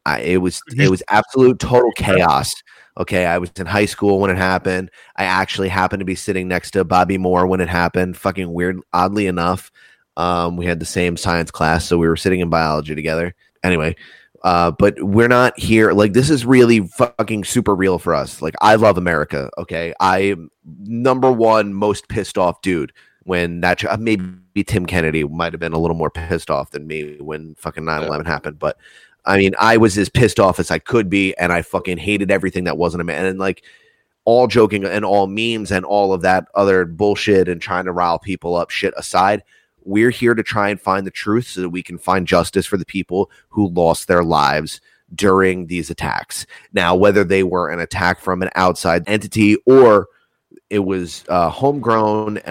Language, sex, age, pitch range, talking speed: English, male, 30-49, 85-105 Hz, 200 wpm